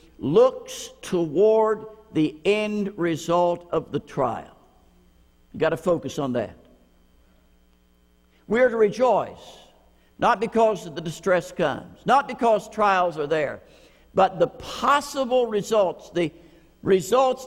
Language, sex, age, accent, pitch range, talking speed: English, male, 60-79, American, 150-225 Hz, 120 wpm